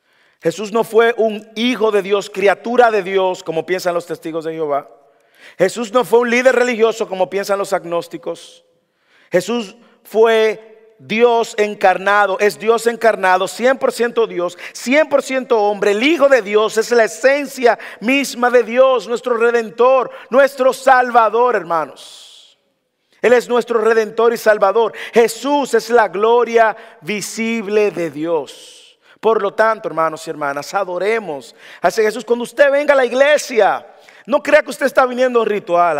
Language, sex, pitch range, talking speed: English, male, 210-265 Hz, 150 wpm